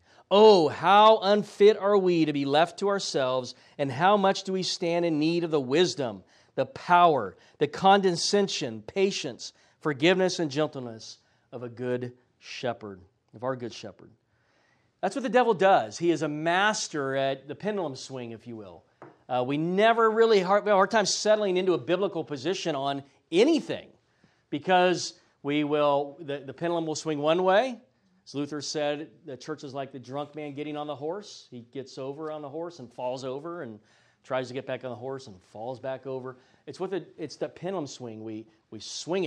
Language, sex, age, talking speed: English, male, 40-59, 190 wpm